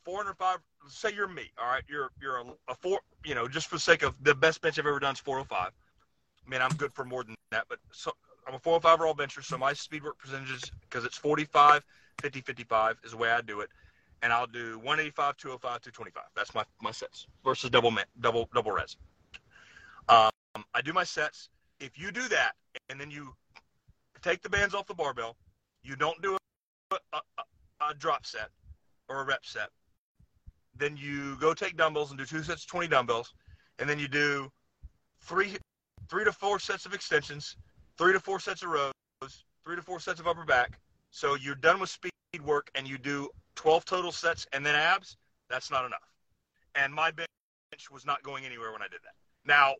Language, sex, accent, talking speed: English, male, American, 205 wpm